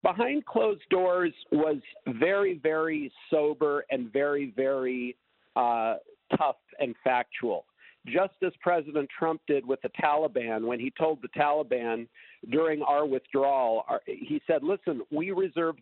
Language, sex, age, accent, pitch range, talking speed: English, male, 50-69, American, 140-185 Hz, 135 wpm